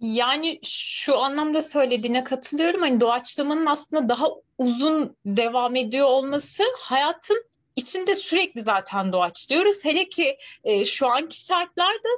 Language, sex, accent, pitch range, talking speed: Turkish, female, native, 245-325 Hz, 120 wpm